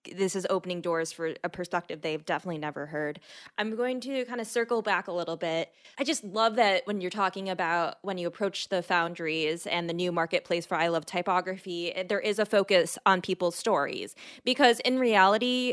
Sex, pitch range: female, 180-230 Hz